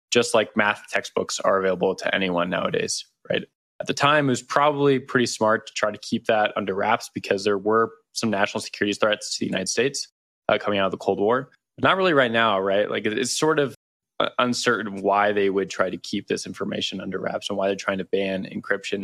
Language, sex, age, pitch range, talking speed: English, male, 20-39, 100-120 Hz, 220 wpm